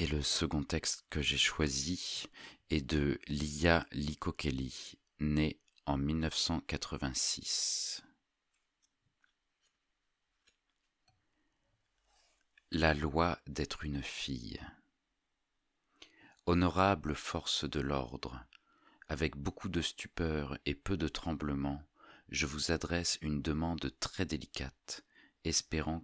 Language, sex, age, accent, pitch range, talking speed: French, male, 40-59, French, 70-80 Hz, 90 wpm